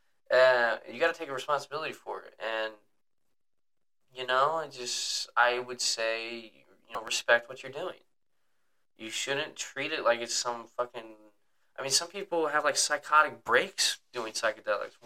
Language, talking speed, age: English, 165 wpm, 10-29